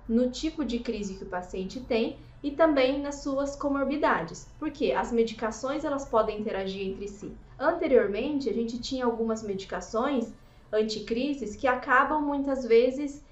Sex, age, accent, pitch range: female, 20-39, Brazilian, 220-270 Hz